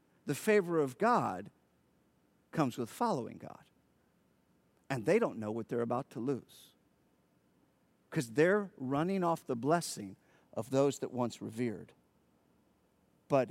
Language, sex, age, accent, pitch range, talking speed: English, male, 50-69, American, 120-190 Hz, 130 wpm